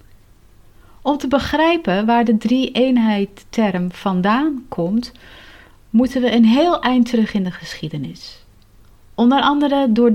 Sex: female